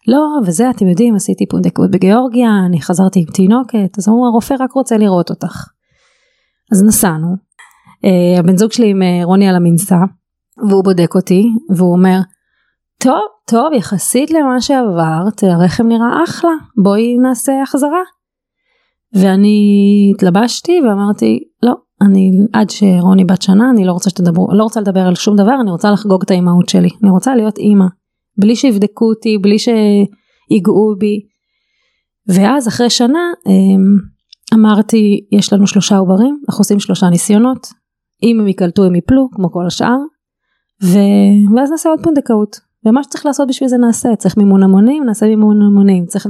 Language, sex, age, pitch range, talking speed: Hebrew, female, 30-49, 190-235 Hz, 150 wpm